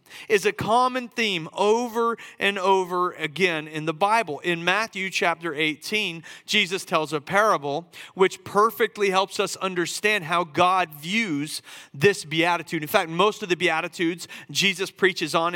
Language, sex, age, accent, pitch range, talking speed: English, male, 40-59, American, 160-205 Hz, 145 wpm